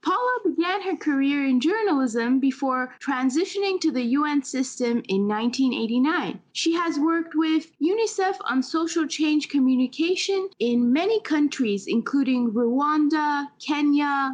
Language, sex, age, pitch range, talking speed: English, female, 20-39, 245-305 Hz, 120 wpm